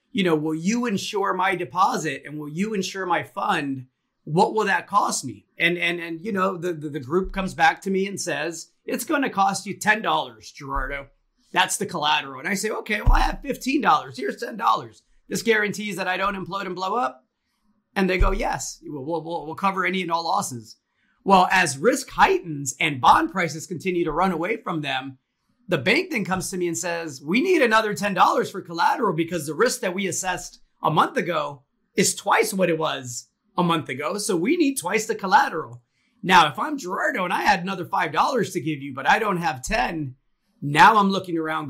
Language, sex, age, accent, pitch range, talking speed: English, male, 30-49, American, 155-200 Hz, 210 wpm